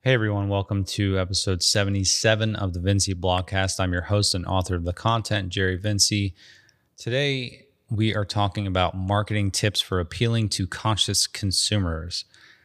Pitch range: 95-105 Hz